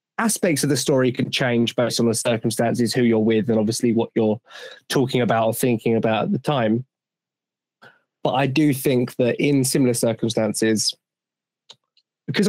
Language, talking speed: English, 165 wpm